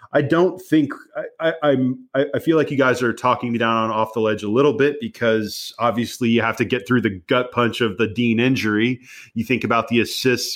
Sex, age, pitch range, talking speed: male, 30-49, 110-130 Hz, 245 wpm